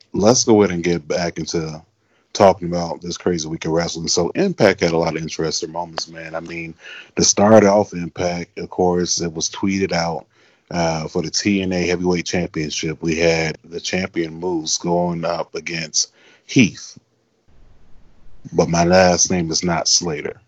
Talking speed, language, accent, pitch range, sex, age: 165 wpm, English, American, 85-95 Hz, male, 30-49